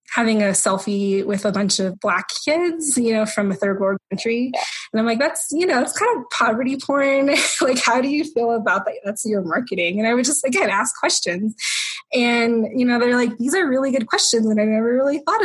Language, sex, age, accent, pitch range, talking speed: English, female, 20-39, American, 195-245 Hz, 230 wpm